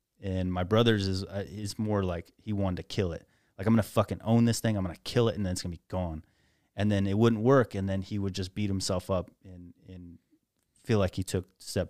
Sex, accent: male, American